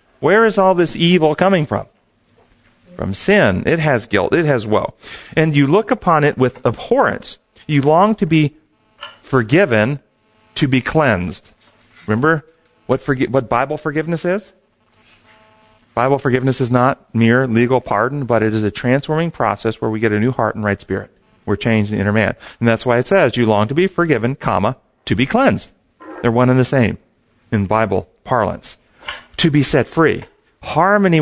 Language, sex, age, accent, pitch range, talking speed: English, male, 40-59, American, 110-165 Hz, 175 wpm